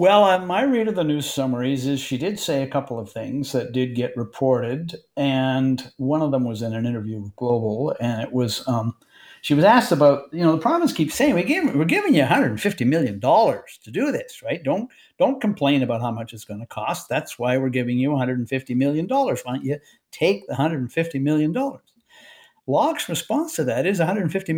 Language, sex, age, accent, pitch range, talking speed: English, male, 60-79, American, 120-155 Hz, 205 wpm